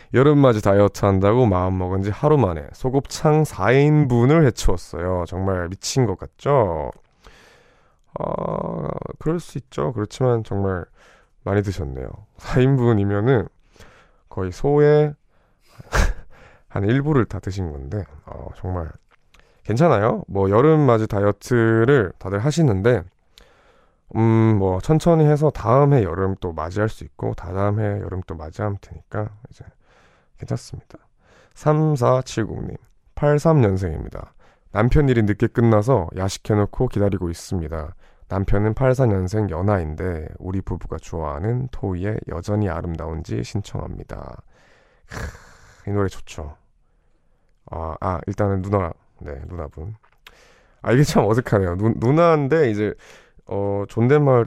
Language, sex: Korean, male